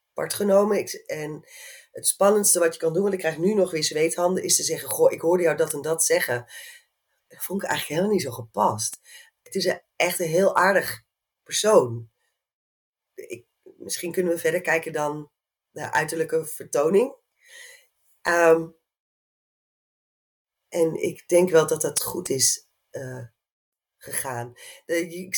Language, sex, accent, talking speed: Dutch, female, Dutch, 160 wpm